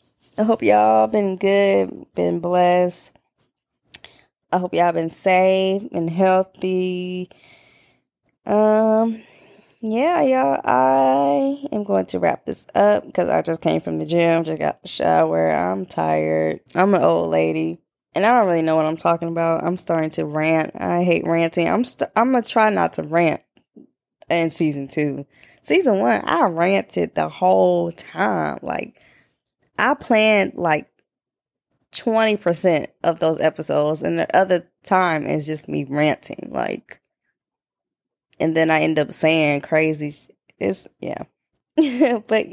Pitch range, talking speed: 150-220 Hz, 150 wpm